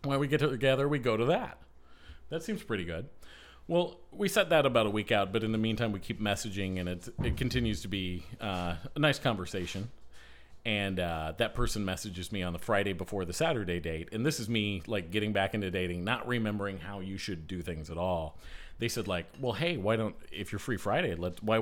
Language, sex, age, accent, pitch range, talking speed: English, male, 40-59, American, 90-120 Hz, 225 wpm